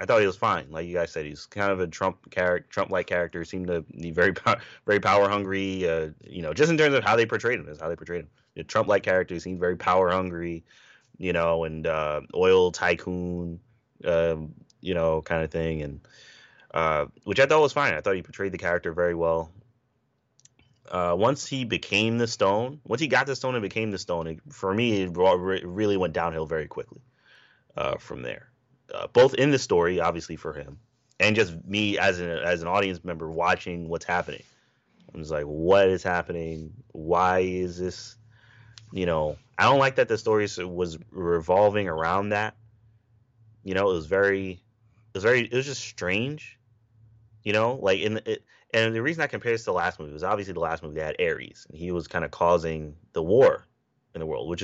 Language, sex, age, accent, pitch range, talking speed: English, male, 20-39, American, 85-110 Hz, 210 wpm